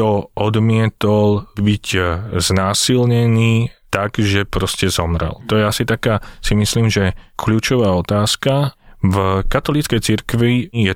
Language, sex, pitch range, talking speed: Slovak, male, 95-110 Hz, 110 wpm